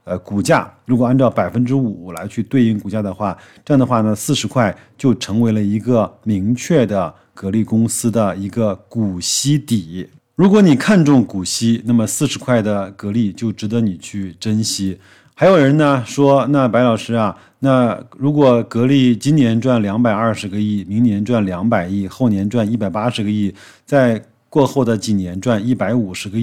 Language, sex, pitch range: Chinese, male, 105-125 Hz